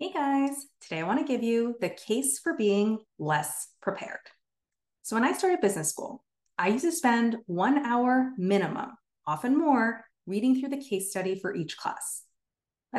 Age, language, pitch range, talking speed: 20-39, English, 195-275 Hz, 175 wpm